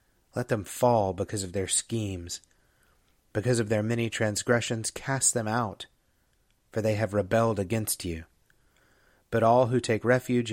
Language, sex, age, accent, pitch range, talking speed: English, male, 30-49, American, 100-120 Hz, 150 wpm